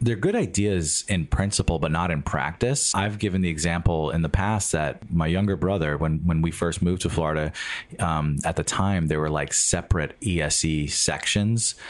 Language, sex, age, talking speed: English, male, 30-49, 185 wpm